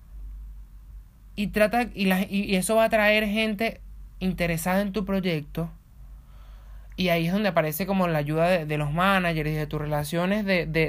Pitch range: 160-205 Hz